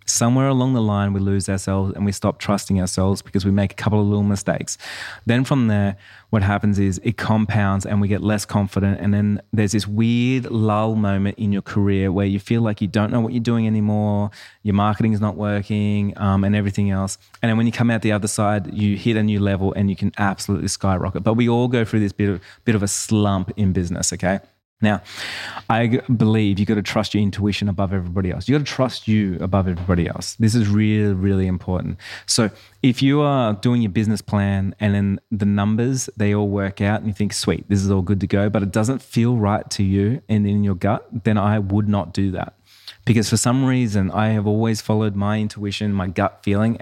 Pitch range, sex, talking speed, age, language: 100-110 Hz, male, 230 wpm, 20-39, English